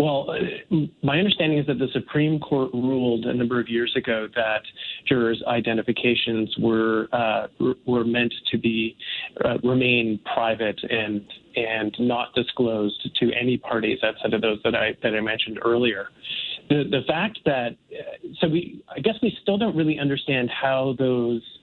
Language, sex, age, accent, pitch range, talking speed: English, male, 30-49, American, 120-145 Hz, 160 wpm